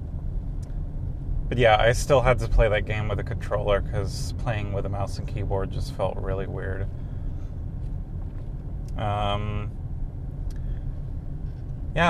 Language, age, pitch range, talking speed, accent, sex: English, 30-49, 100-120 Hz, 125 wpm, American, male